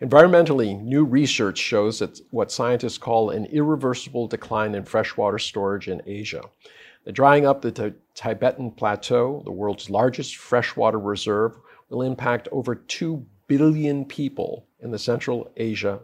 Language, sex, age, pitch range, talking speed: English, male, 50-69, 110-130 Hz, 145 wpm